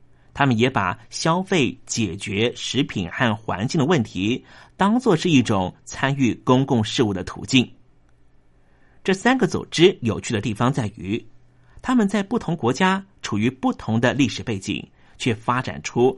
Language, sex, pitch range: Chinese, male, 115-165 Hz